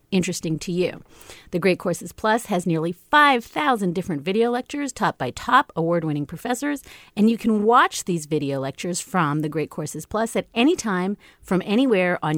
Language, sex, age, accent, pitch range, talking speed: English, female, 40-59, American, 175-230 Hz, 175 wpm